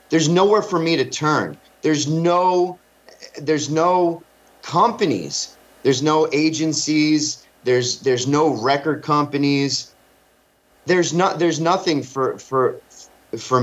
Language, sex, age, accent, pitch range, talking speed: English, male, 30-49, American, 125-155 Hz, 115 wpm